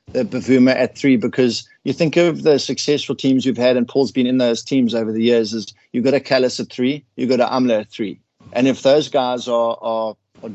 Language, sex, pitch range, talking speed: English, male, 115-135 Hz, 240 wpm